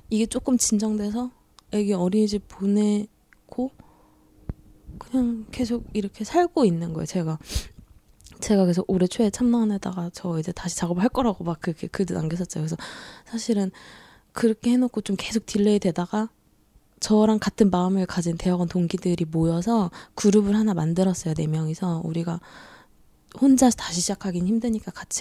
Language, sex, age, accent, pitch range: Korean, female, 20-39, native, 180-225 Hz